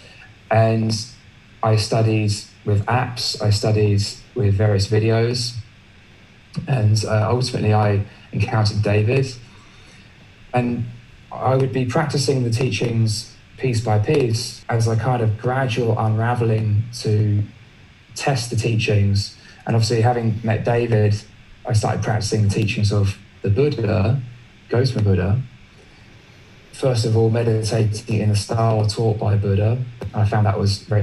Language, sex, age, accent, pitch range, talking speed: English, male, 20-39, British, 105-120 Hz, 130 wpm